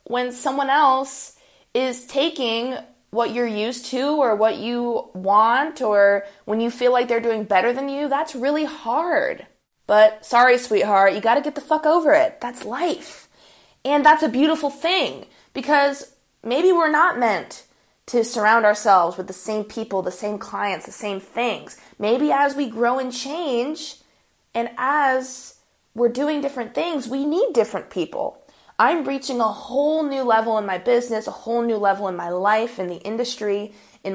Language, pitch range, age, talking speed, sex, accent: English, 210-285 Hz, 20-39, 170 wpm, female, American